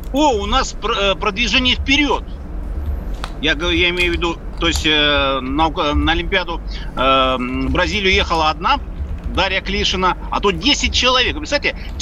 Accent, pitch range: native, 155-230 Hz